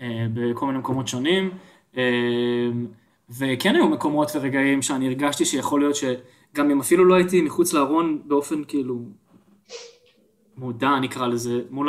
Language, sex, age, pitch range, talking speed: Hebrew, male, 20-39, 120-145 Hz, 125 wpm